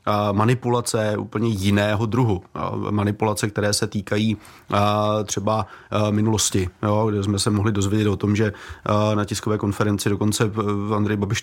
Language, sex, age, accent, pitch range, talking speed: Czech, male, 30-49, native, 100-110 Hz, 130 wpm